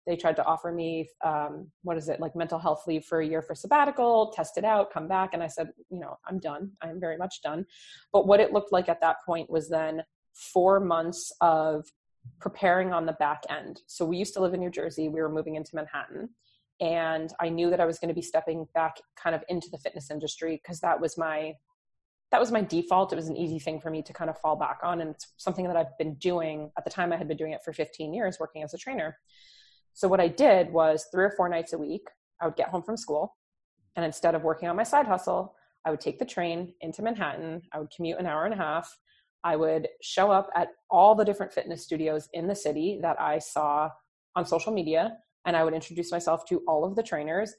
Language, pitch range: English, 160-185 Hz